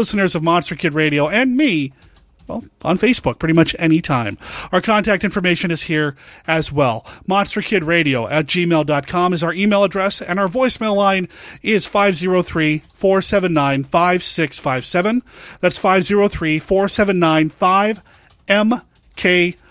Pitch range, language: 160-205 Hz, English